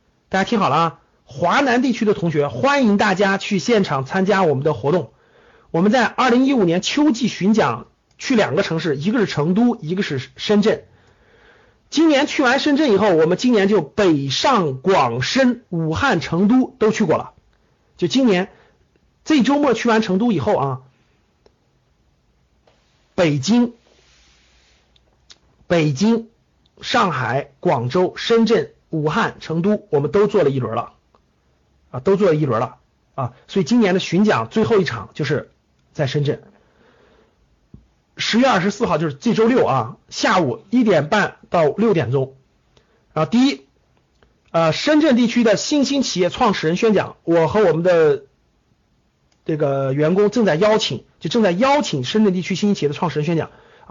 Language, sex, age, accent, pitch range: Chinese, male, 50-69, native, 155-225 Hz